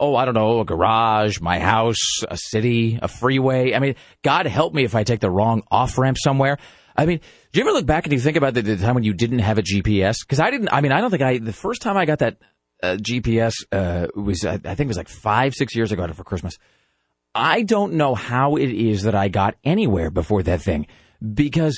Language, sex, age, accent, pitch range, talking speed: English, male, 40-59, American, 105-145 Hz, 250 wpm